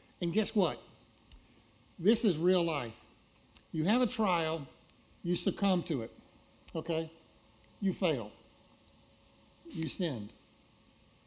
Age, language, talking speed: 60-79, English, 105 wpm